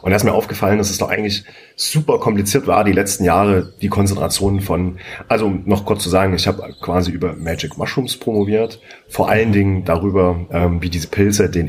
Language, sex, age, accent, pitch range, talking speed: German, male, 30-49, German, 90-105 Hz, 200 wpm